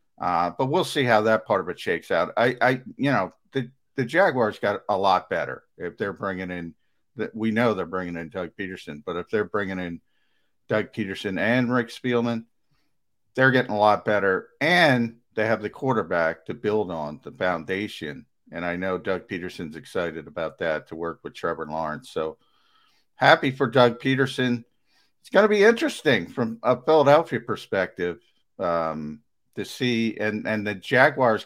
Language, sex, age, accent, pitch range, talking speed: English, male, 50-69, American, 90-125 Hz, 175 wpm